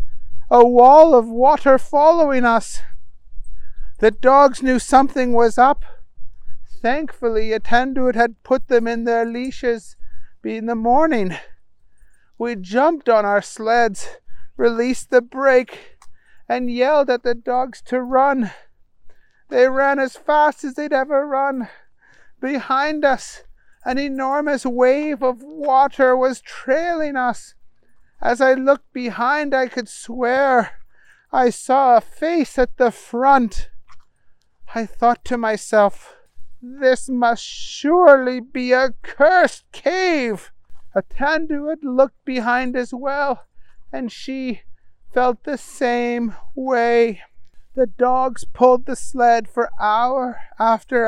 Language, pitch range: English, 235-275 Hz